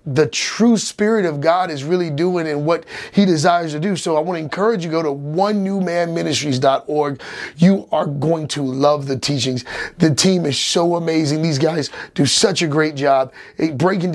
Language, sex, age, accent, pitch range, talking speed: English, male, 30-49, American, 145-185 Hz, 205 wpm